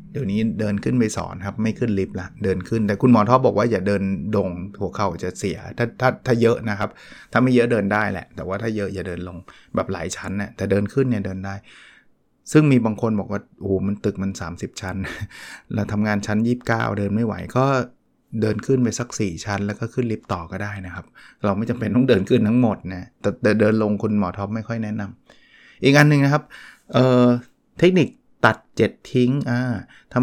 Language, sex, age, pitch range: Thai, male, 20-39, 100-125 Hz